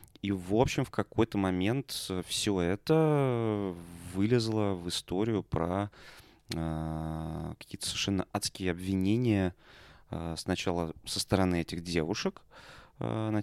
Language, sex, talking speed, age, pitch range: Russian, male, 110 wpm, 20-39, 85-100 Hz